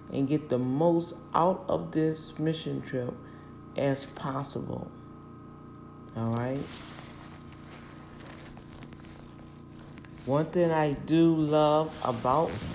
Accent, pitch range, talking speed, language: American, 125-160 Hz, 85 wpm, English